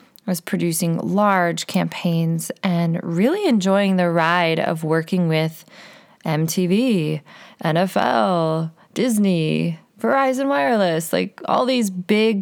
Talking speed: 105 wpm